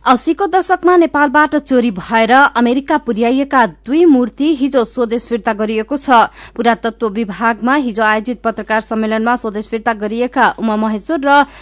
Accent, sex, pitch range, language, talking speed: Indian, female, 230-280 Hz, English, 155 wpm